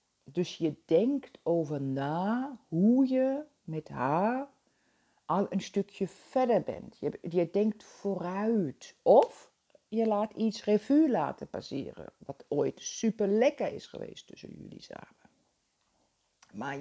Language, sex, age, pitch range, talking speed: Dutch, female, 50-69, 155-200 Hz, 125 wpm